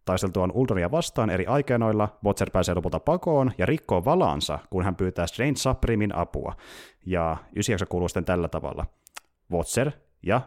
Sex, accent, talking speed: male, native, 145 wpm